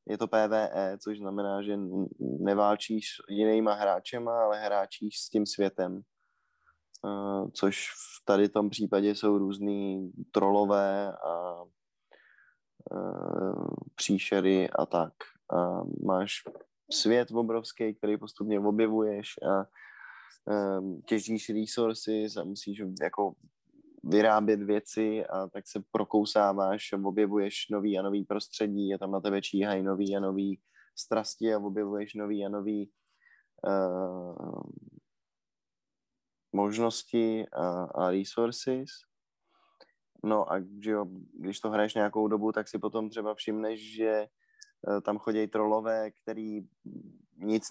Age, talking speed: 10-29, 115 wpm